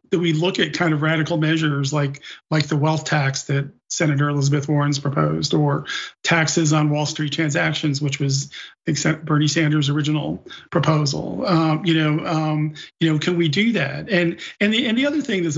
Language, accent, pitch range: English, American, 150-170 Hz